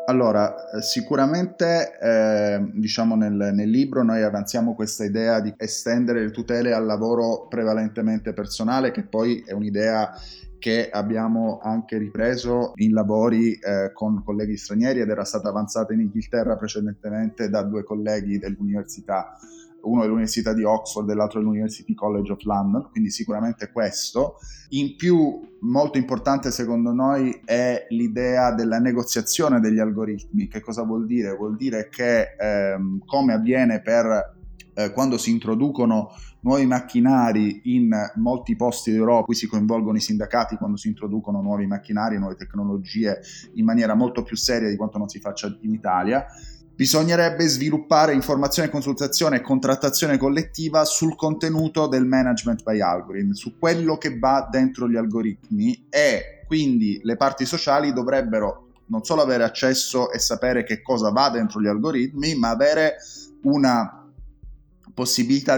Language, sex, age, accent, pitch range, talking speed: Italian, male, 20-39, native, 110-140 Hz, 145 wpm